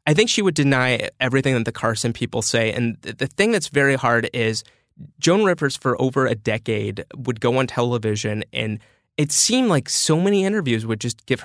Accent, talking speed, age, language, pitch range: American, 200 wpm, 20-39, English, 115-145 Hz